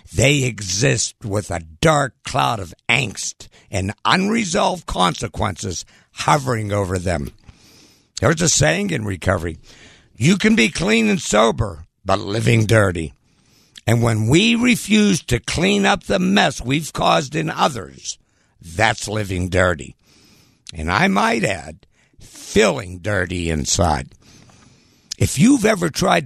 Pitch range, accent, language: 95-150 Hz, American, English